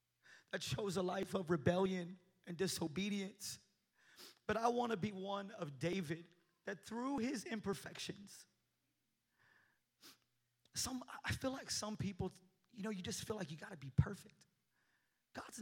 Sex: male